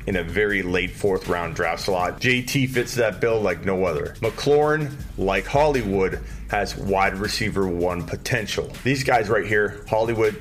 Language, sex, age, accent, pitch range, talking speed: English, male, 30-49, American, 90-120 Hz, 160 wpm